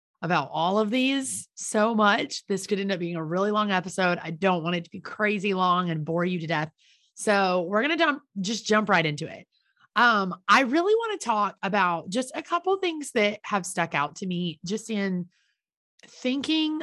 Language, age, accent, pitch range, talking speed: English, 30-49, American, 180-235 Hz, 205 wpm